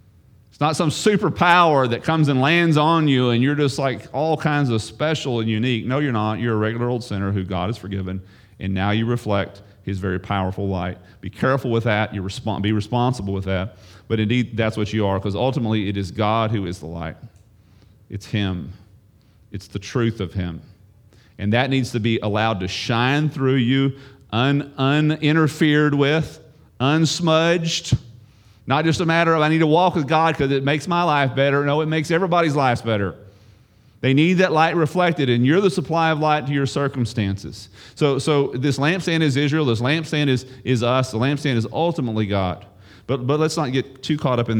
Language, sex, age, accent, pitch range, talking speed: English, male, 40-59, American, 105-140 Hz, 200 wpm